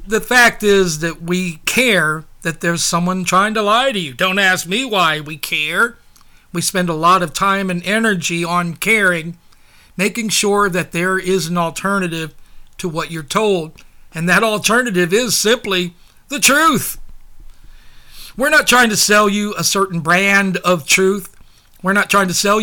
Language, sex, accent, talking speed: English, male, American, 170 wpm